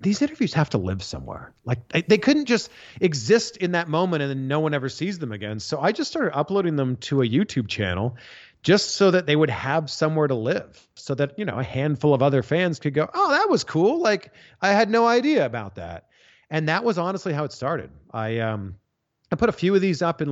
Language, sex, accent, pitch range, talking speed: English, male, American, 125-185 Hz, 235 wpm